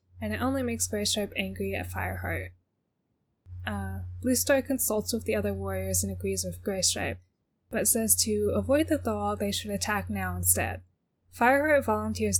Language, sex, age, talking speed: English, female, 10-29, 155 wpm